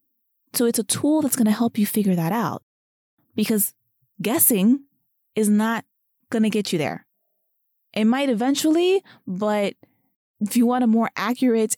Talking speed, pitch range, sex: 160 wpm, 185-240 Hz, female